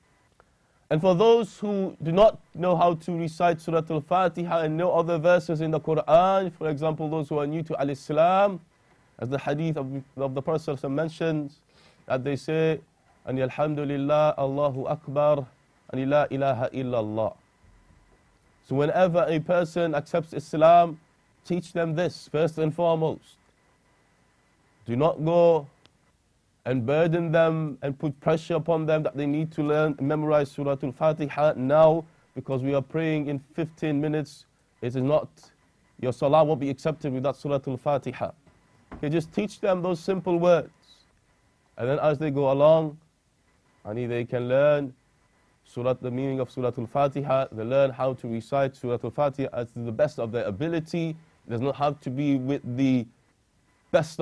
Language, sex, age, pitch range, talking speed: English, male, 30-49, 135-165 Hz, 155 wpm